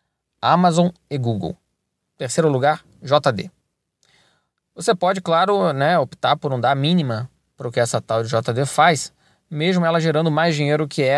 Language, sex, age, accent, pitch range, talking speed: Portuguese, male, 20-39, Brazilian, 125-165 Hz, 155 wpm